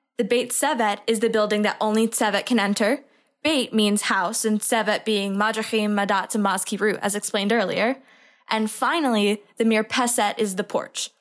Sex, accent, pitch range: female, American, 210-245 Hz